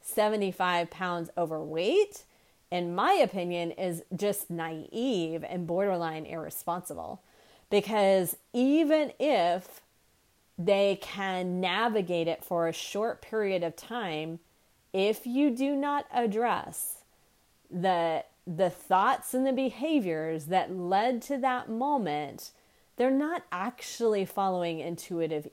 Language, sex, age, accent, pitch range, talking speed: English, female, 30-49, American, 170-215 Hz, 110 wpm